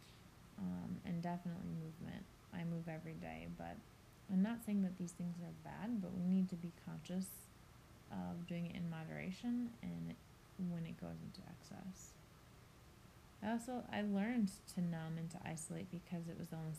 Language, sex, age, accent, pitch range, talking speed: English, female, 20-39, American, 155-185 Hz, 170 wpm